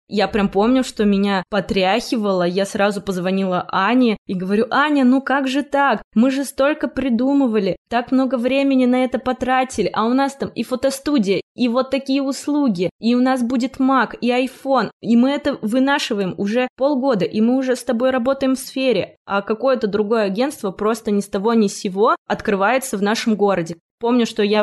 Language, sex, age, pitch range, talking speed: Russian, female, 20-39, 185-240 Hz, 185 wpm